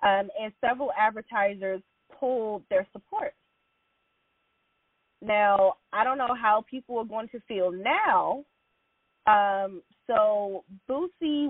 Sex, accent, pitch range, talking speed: female, American, 200-260 Hz, 110 wpm